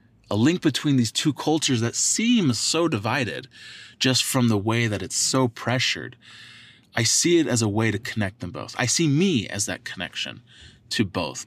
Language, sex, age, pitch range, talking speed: English, male, 20-39, 105-130 Hz, 190 wpm